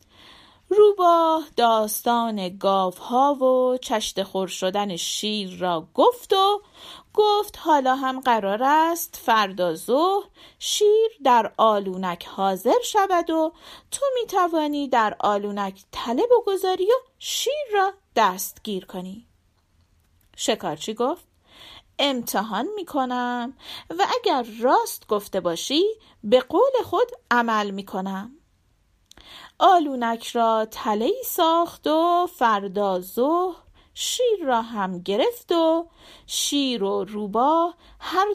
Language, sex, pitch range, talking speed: Persian, female, 215-345 Hz, 110 wpm